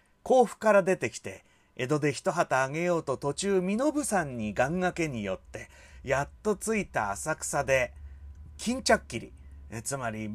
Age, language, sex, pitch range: 40-59, Japanese, male, 120-175 Hz